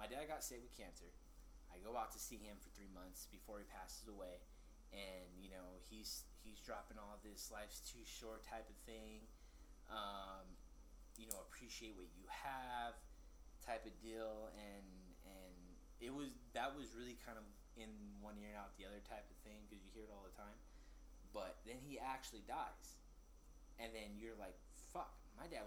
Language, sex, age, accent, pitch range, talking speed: English, male, 20-39, American, 95-120 Hz, 190 wpm